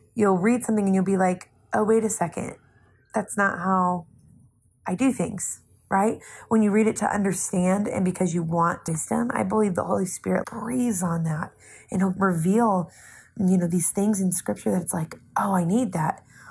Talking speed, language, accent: 195 wpm, English, American